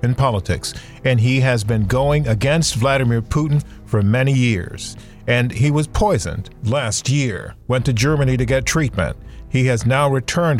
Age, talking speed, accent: 40-59, 165 wpm, American